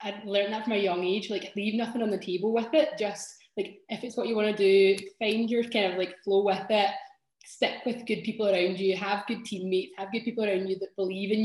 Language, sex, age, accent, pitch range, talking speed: English, female, 10-29, British, 190-225 Hz, 255 wpm